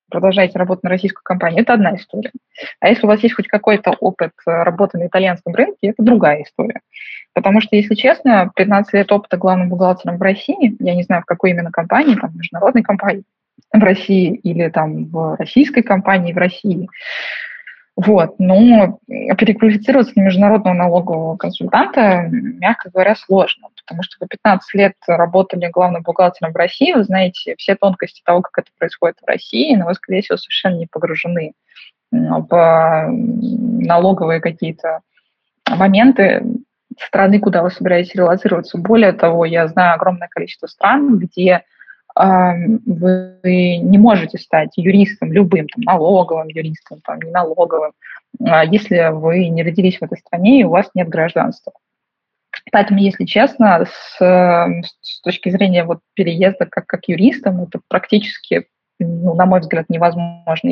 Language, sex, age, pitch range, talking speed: Russian, female, 20-39, 175-210 Hz, 150 wpm